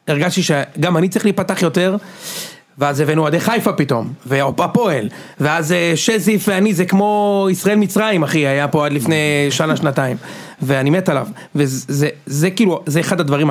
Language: Hebrew